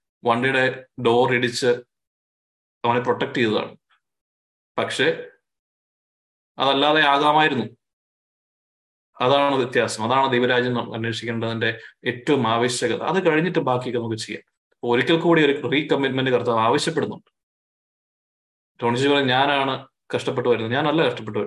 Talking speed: 90 wpm